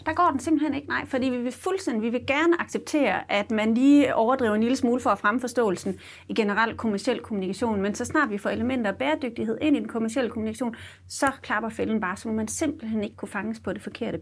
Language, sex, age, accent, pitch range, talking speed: Danish, female, 30-49, native, 190-245 Hz, 225 wpm